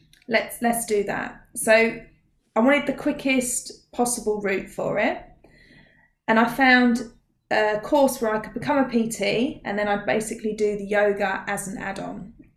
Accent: British